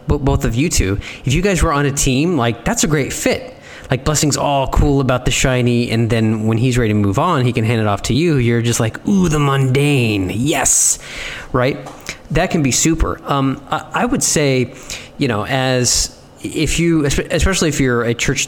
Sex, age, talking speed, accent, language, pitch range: male, 20-39, 210 wpm, American, English, 110-140 Hz